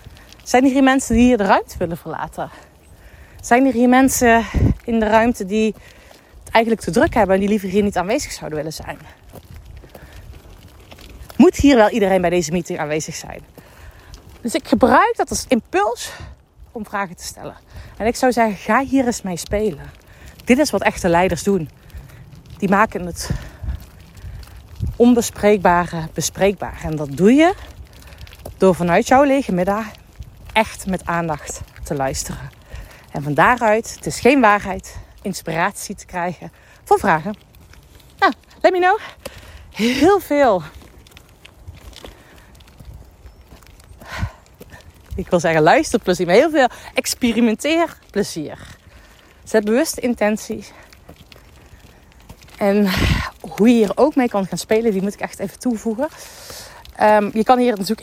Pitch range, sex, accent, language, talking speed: 180-245 Hz, female, Dutch, Dutch, 140 wpm